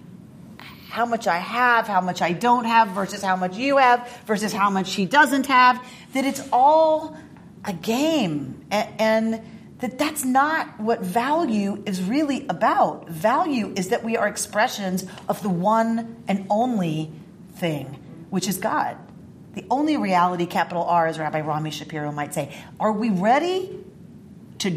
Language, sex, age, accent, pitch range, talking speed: English, female, 40-59, American, 180-250 Hz, 155 wpm